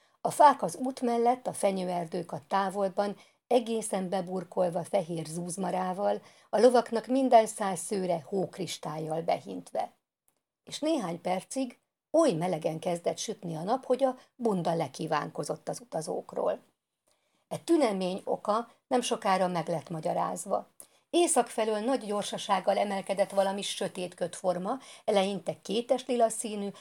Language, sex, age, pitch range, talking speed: Hungarian, female, 50-69, 180-225 Hz, 120 wpm